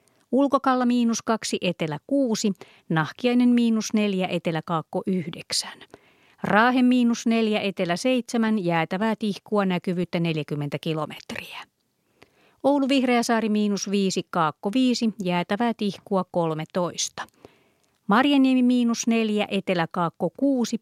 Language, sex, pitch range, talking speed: Finnish, female, 180-230 Hz, 100 wpm